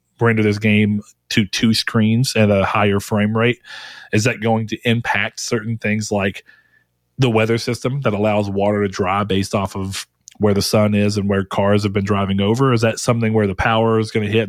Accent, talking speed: American, 210 wpm